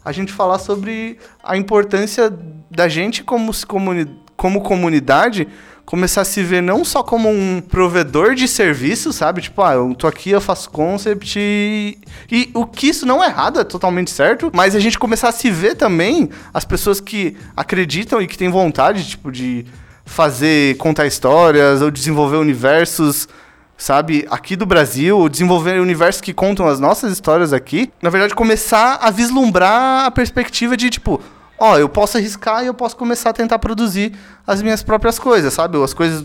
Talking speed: 180 wpm